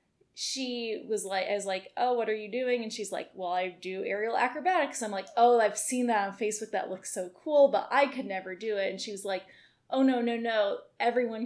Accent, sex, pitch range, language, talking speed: American, female, 195-245 Hz, English, 240 wpm